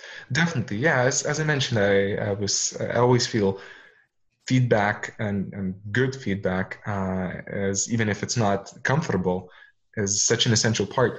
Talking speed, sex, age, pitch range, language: 155 wpm, male, 20-39, 100-125 Hz, English